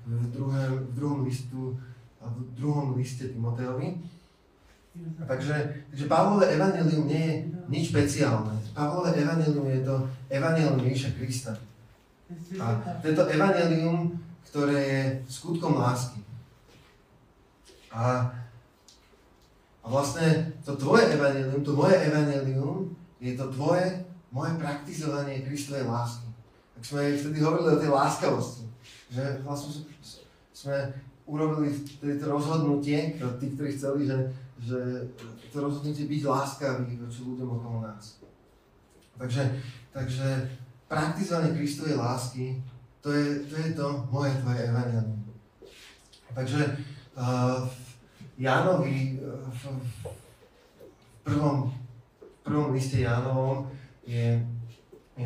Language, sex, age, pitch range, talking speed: Slovak, male, 30-49, 125-150 Hz, 105 wpm